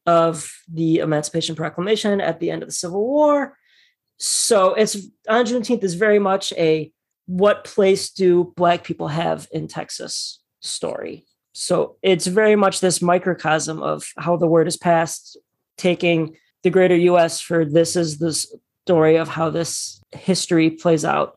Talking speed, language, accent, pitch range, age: 150 wpm, English, American, 165-190 Hz, 30-49